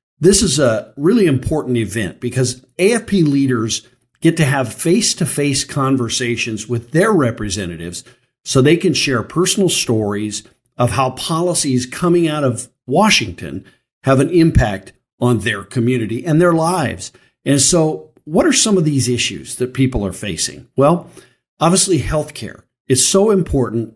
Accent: American